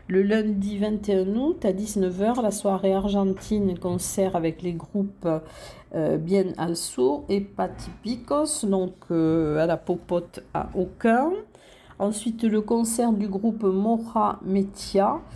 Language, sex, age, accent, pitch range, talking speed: French, female, 50-69, French, 175-215 Hz, 120 wpm